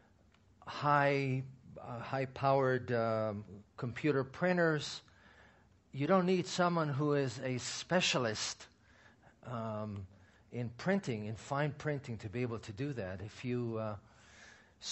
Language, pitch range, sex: English, 110-145 Hz, male